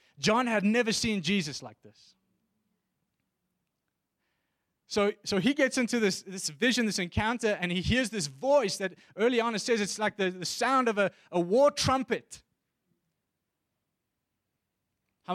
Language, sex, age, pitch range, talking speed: English, male, 20-39, 185-245 Hz, 150 wpm